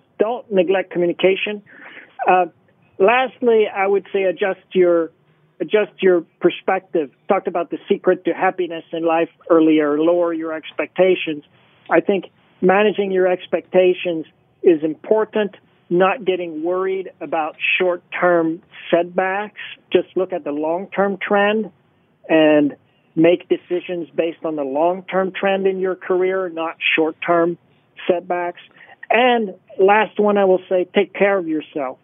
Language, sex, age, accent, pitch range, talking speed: English, male, 50-69, American, 160-190 Hz, 125 wpm